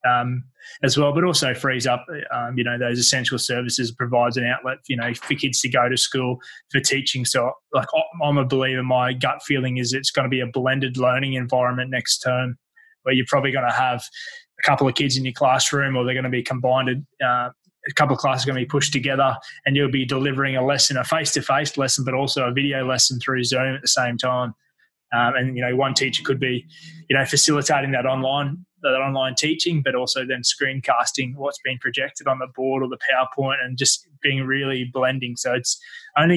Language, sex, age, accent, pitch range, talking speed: English, male, 20-39, Australian, 125-140 Hz, 220 wpm